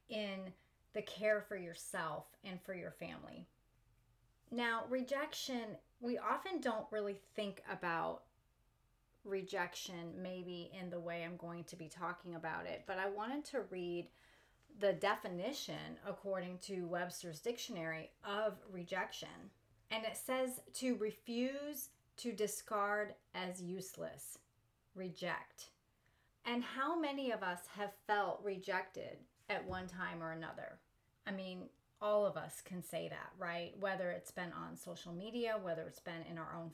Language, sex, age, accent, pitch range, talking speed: English, female, 30-49, American, 175-215 Hz, 140 wpm